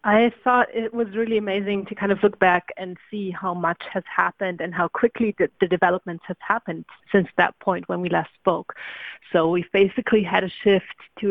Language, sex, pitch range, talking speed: English, female, 175-210 Hz, 205 wpm